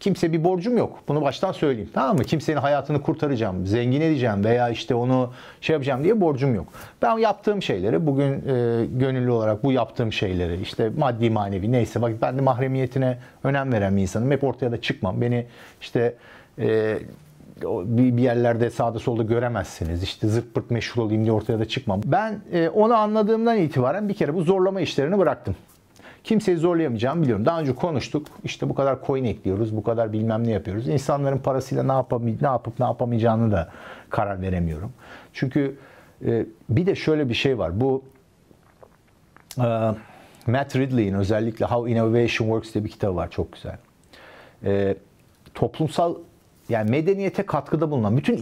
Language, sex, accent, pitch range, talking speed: Turkish, male, native, 110-145 Hz, 165 wpm